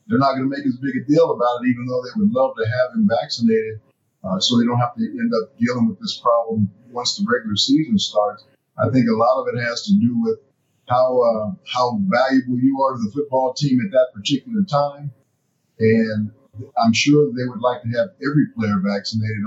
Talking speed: 220 wpm